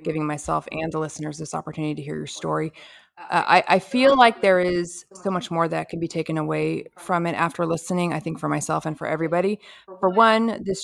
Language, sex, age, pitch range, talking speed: English, female, 20-39, 160-190 Hz, 220 wpm